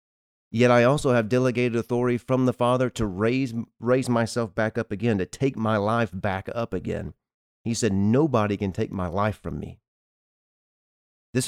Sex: male